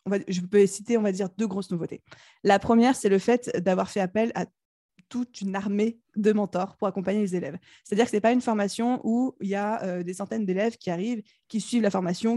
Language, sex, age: French, female, 20-39